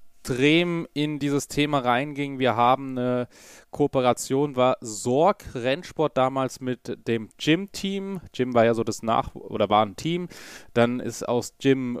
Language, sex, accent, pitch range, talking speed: German, male, German, 115-145 Hz, 150 wpm